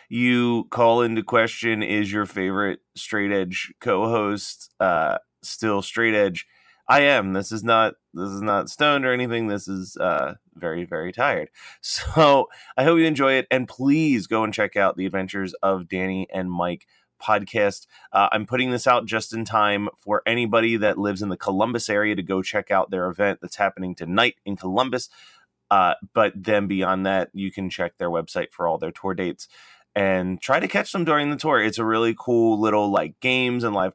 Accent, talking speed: American, 190 wpm